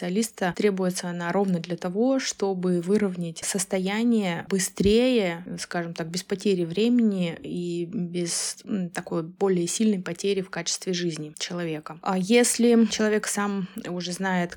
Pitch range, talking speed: 175-200 Hz, 125 wpm